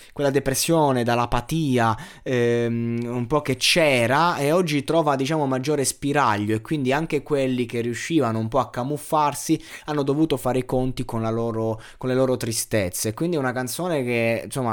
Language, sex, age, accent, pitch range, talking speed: Italian, male, 20-39, native, 115-160 Hz, 170 wpm